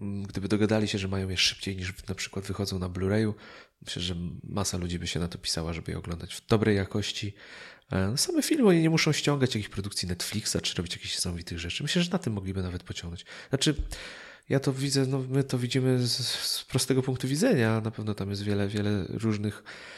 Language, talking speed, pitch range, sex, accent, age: Polish, 210 wpm, 95-130 Hz, male, native, 30-49